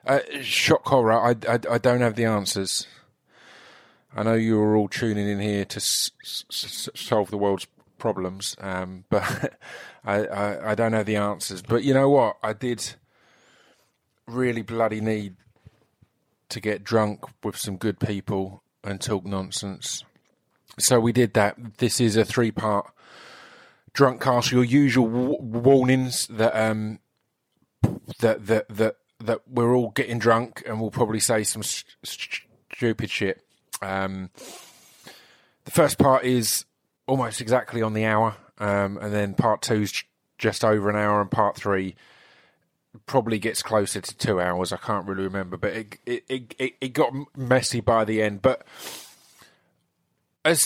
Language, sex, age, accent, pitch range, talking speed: English, male, 20-39, British, 105-125 Hz, 155 wpm